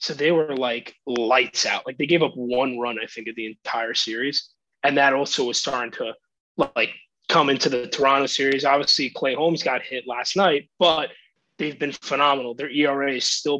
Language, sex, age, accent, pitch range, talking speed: English, male, 20-39, American, 140-195 Hz, 200 wpm